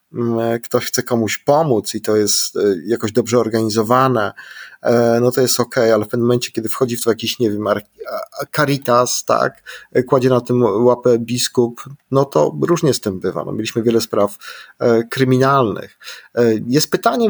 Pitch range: 115-130 Hz